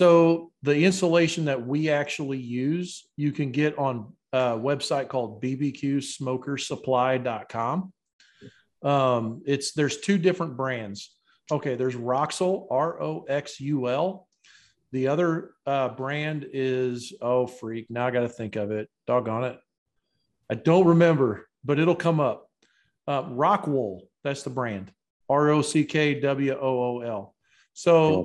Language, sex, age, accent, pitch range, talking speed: English, male, 40-59, American, 125-155 Hz, 115 wpm